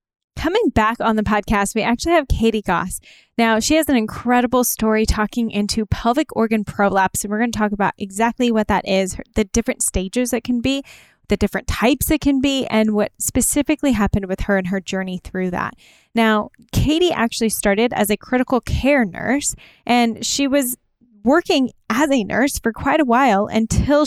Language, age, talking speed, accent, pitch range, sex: English, 10-29, 185 wpm, American, 205-250 Hz, female